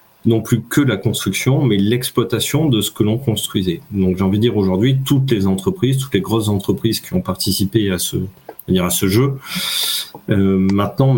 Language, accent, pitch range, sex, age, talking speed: French, French, 95-125 Hz, male, 30-49, 200 wpm